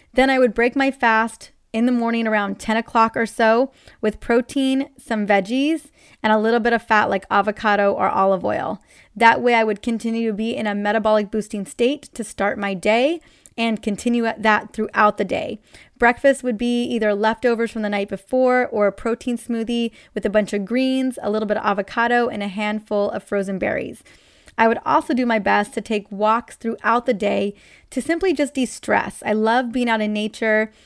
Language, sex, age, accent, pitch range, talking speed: English, female, 20-39, American, 210-245 Hz, 200 wpm